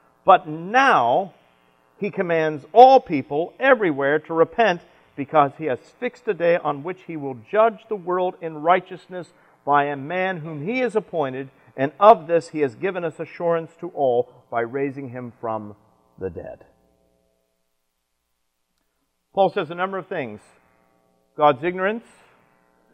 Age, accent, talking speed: 50-69, American, 145 wpm